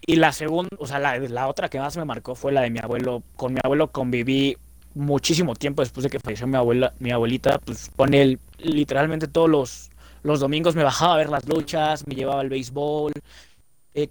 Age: 20-39